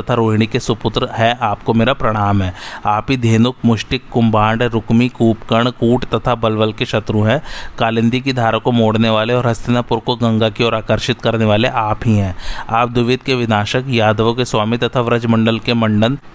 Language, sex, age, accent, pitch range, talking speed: Hindi, male, 30-49, native, 110-125 Hz, 50 wpm